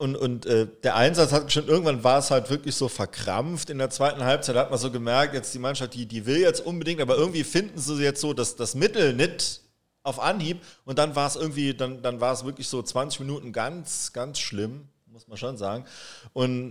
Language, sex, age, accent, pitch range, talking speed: German, male, 40-59, German, 120-150 Hz, 225 wpm